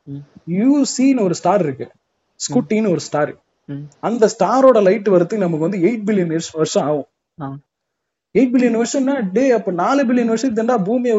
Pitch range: 180-250 Hz